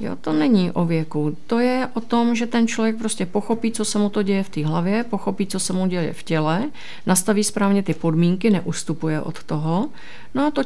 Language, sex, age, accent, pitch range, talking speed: Czech, female, 50-69, native, 160-200 Hz, 220 wpm